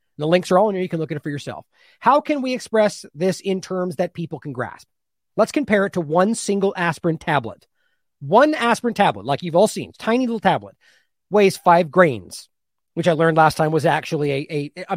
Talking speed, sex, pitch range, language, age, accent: 220 wpm, male, 155-225 Hz, English, 40-59, American